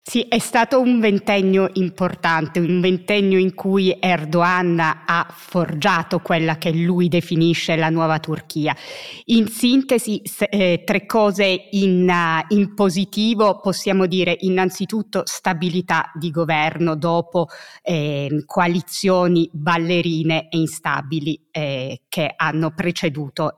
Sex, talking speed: female, 110 wpm